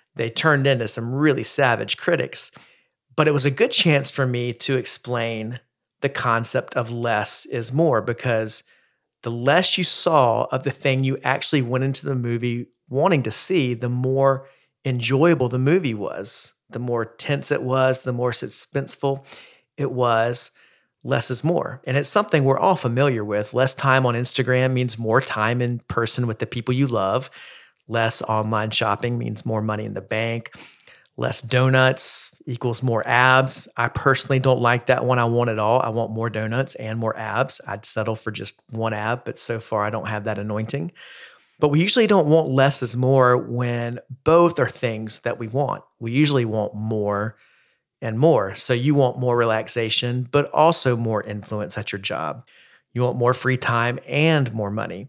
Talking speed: 180 wpm